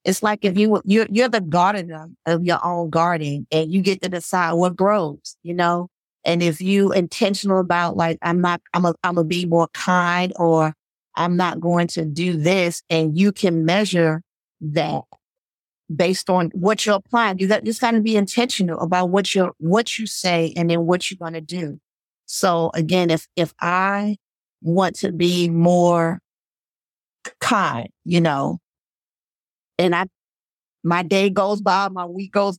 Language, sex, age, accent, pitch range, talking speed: English, female, 40-59, American, 170-200 Hz, 170 wpm